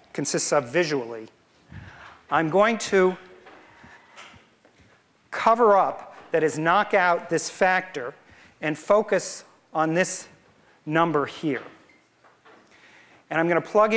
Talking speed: 105 wpm